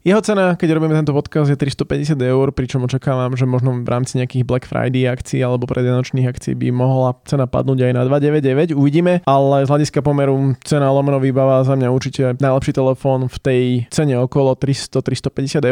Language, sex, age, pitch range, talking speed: Slovak, male, 20-39, 125-140 Hz, 180 wpm